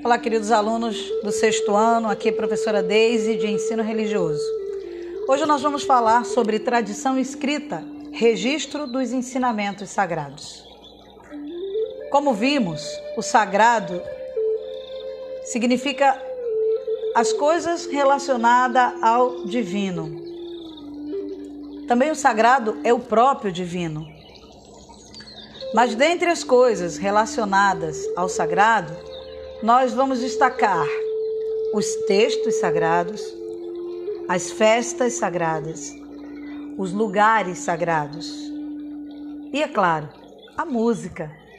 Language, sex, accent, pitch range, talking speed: Portuguese, female, Brazilian, 220-345 Hz, 95 wpm